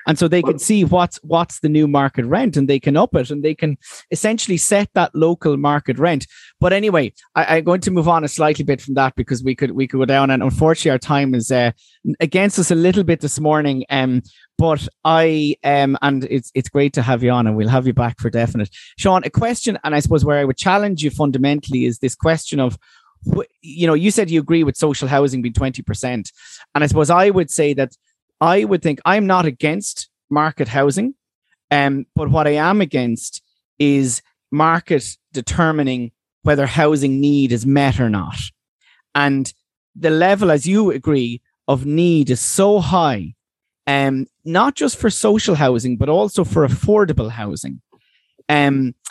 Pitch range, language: 130-170 Hz, English